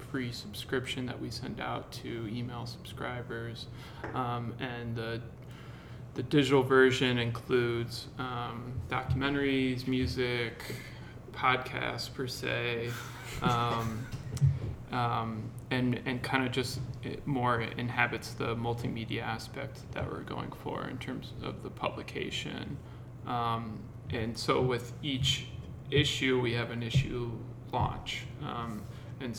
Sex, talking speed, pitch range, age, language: male, 115 wpm, 120-130 Hz, 20-39, English